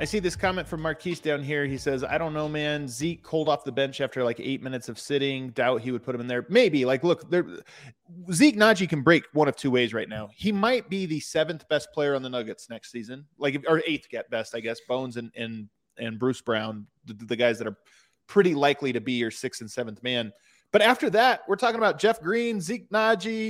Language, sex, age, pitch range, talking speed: English, male, 30-49, 130-185 Hz, 245 wpm